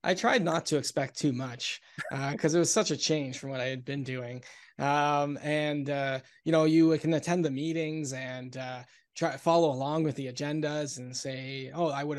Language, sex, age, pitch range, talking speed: English, male, 20-39, 135-160 Hz, 210 wpm